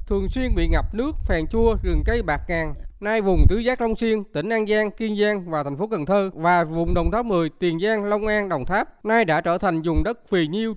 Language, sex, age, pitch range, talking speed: Vietnamese, male, 20-39, 170-230 Hz, 255 wpm